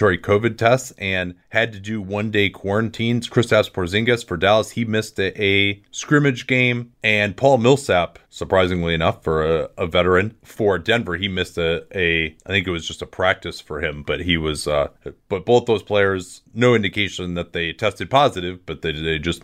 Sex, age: male, 30-49